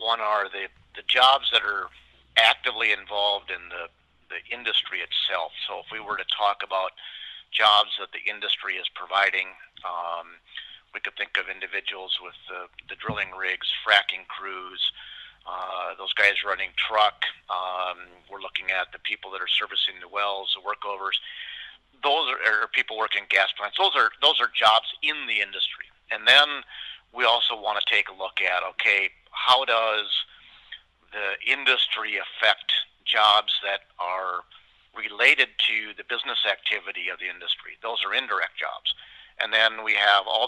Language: English